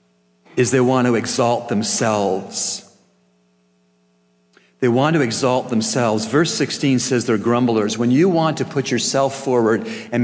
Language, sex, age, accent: English, male, 40-59, American